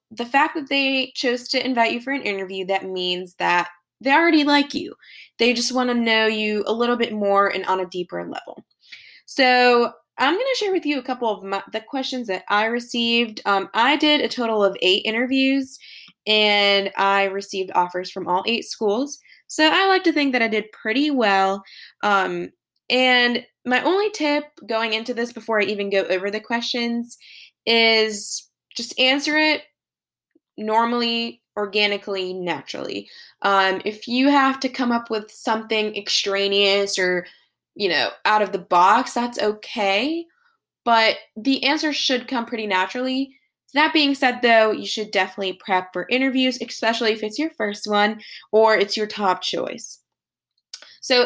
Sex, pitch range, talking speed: female, 200-255 Hz, 170 wpm